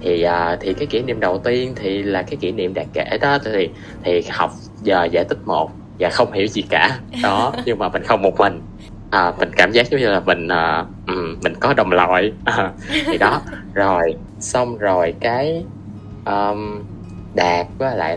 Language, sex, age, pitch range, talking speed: Vietnamese, male, 20-39, 90-115 Hz, 190 wpm